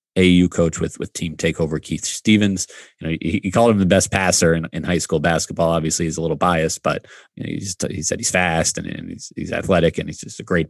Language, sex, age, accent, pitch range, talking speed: English, male, 30-49, American, 85-105 Hz, 260 wpm